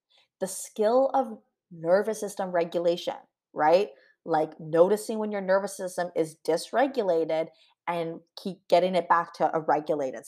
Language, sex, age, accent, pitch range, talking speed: English, female, 20-39, American, 170-225 Hz, 135 wpm